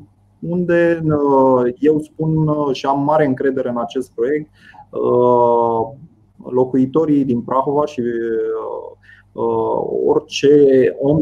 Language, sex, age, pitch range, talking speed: Romanian, male, 20-39, 125-150 Hz, 85 wpm